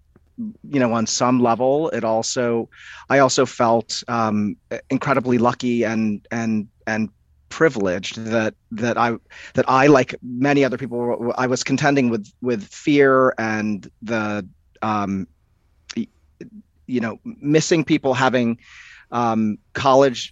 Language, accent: English, American